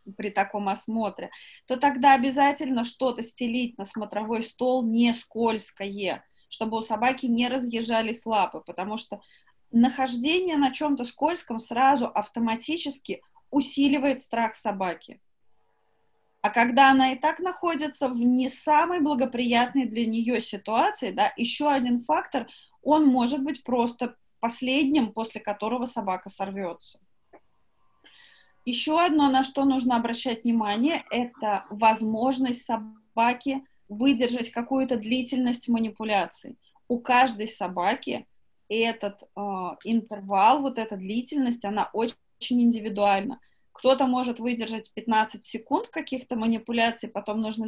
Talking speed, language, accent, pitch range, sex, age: 115 wpm, Russian, native, 220-270 Hz, female, 20-39